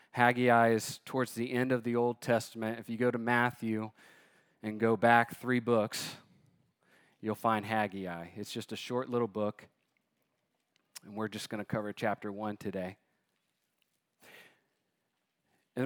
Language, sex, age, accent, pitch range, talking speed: English, male, 30-49, American, 110-130 Hz, 145 wpm